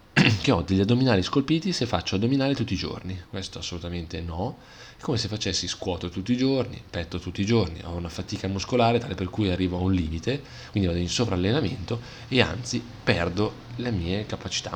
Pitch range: 90-115 Hz